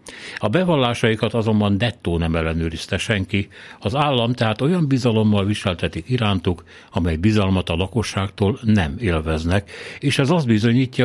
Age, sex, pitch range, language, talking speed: 60-79, male, 90-115 Hz, Hungarian, 130 wpm